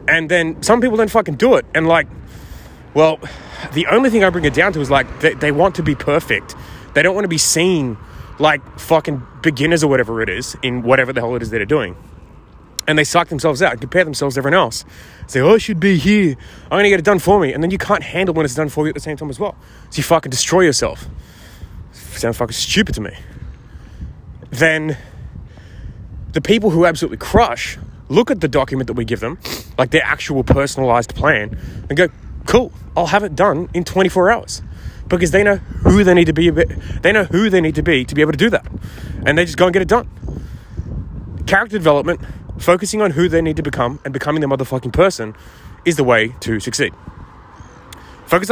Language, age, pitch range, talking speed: English, 20-39, 120-175 Hz, 220 wpm